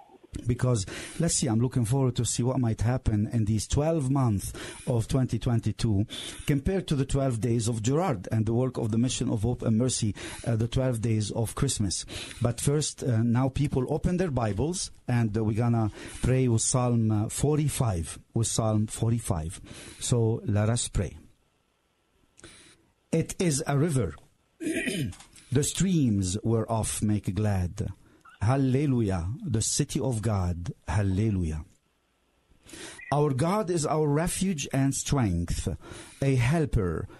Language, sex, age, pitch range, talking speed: English, male, 50-69, 105-130 Hz, 145 wpm